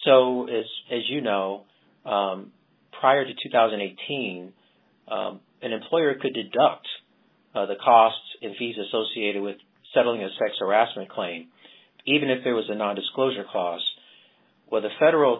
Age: 40-59